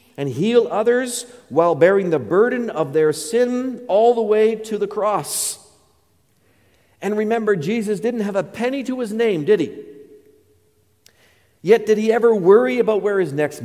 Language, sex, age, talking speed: English, male, 50-69, 165 wpm